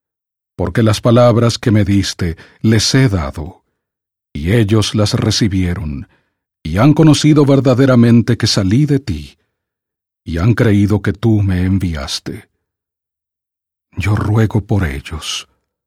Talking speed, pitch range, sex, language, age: 120 wpm, 90-120 Hz, male, English, 40-59